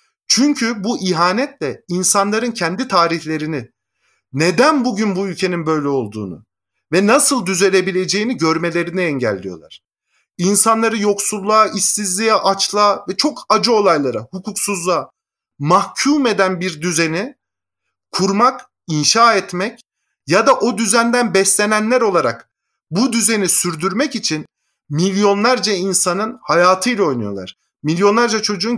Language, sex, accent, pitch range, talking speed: Turkish, male, native, 165-225 Hz, 100 wpm